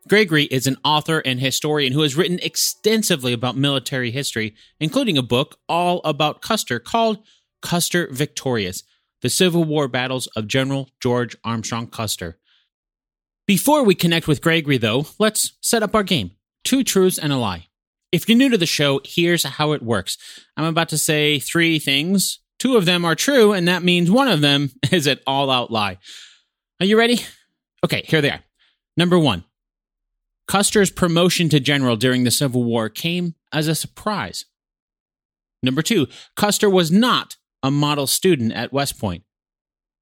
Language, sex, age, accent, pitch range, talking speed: English, male, 30-49, American, 125-180 Hz, 165 wpm